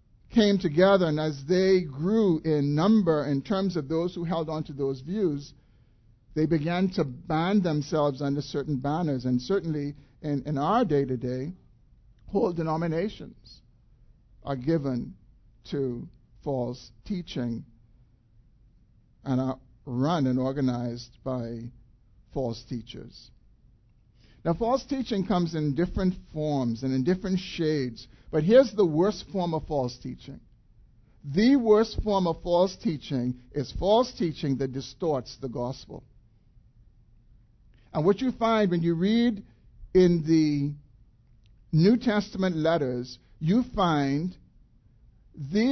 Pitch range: 120-175 Hz